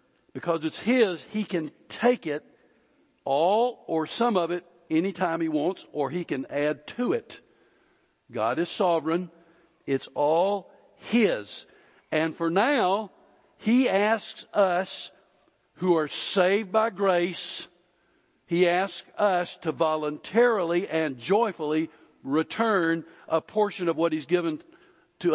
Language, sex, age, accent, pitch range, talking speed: English, male, 60-79, American, 155-200 Hz, 125 wpm